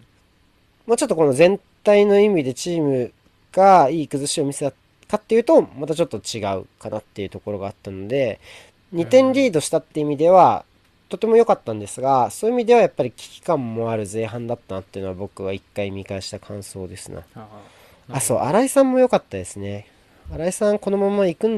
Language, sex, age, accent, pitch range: Japanese, male, 40-59, native, 100-165 Hz